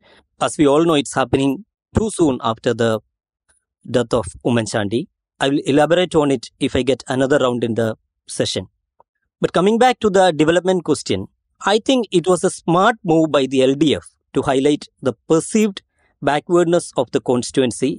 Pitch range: 130-180 Hz